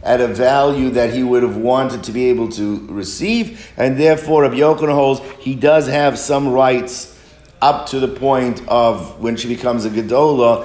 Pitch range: 120-140 Hz